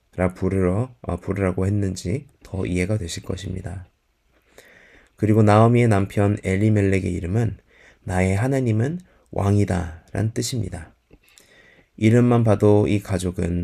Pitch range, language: 90-110 Hz, Korean